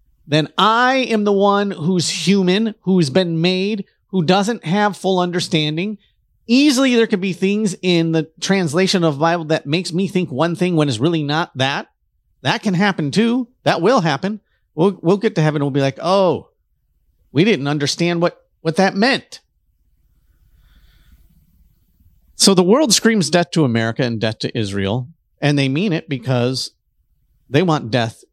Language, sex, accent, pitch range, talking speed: English, male, American, 110-185 Hz, 170 wpm